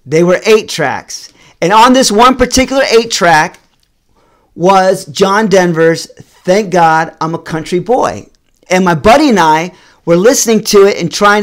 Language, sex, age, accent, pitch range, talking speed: English, male, 40-59, American, 170-220 Hz, 165 wpm